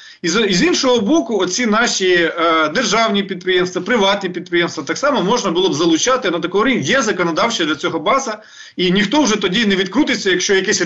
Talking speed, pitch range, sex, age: 180 wpm, 165-250 Hz, male, 30-49